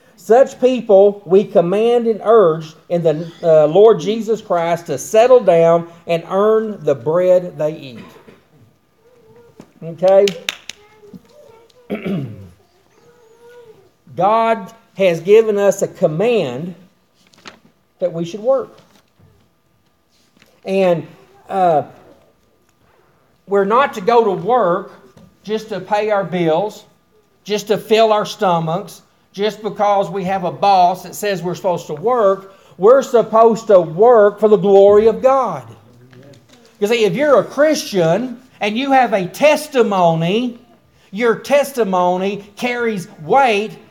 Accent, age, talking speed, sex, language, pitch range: American, 50-69, 120 wpm, male, English, 185-230 Hz